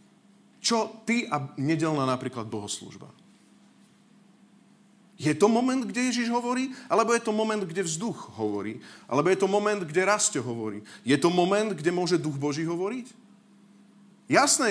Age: 40-59